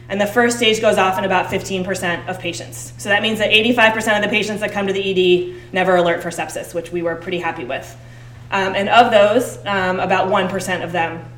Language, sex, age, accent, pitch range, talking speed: English, female, 20-39, American, 170-195 Hz, 225 wpm